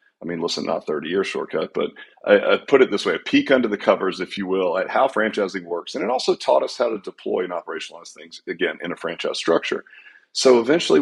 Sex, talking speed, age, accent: male, 235 wpm, 40-59, American